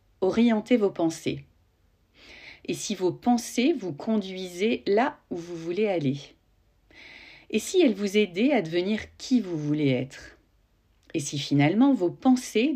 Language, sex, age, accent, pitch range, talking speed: French, female, 50-69, French, 165-250 Hz, 140 wpm